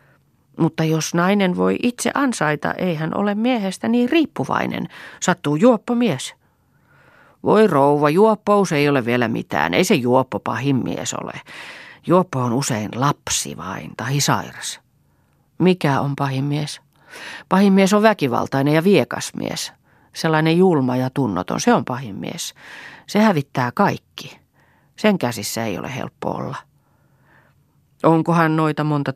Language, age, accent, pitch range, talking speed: Finnish, 40-59, native, 125-170 Hz, 130 wpm